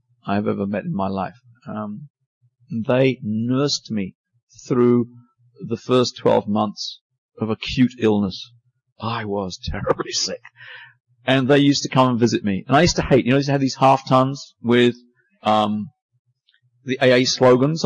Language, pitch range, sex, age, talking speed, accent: English, 110-135 Hz, male, 40-59, 160 wpm, British